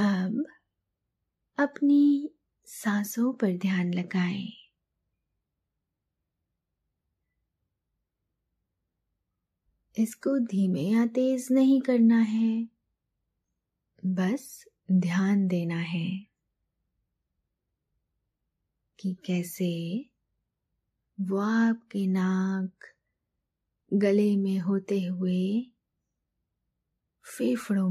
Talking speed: 55 wpm